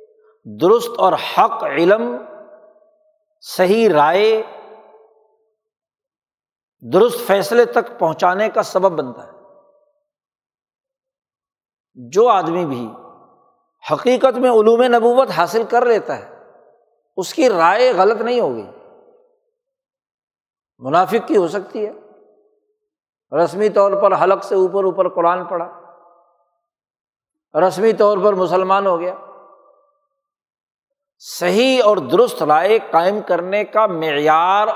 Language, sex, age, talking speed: Urdu, male, 60-79, 100 wpm